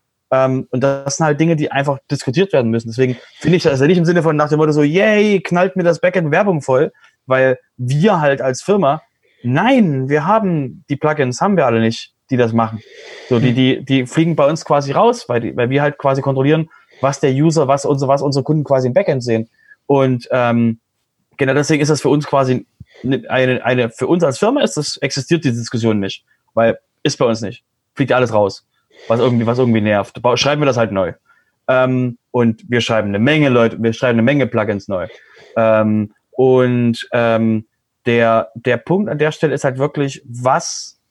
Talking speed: 205 wpm